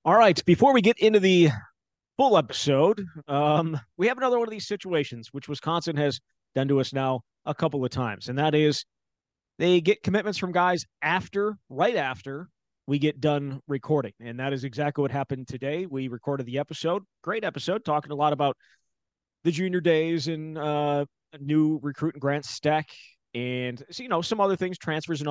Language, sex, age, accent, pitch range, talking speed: English, male, 30-49, American, 135-165 Hz, 185 wpm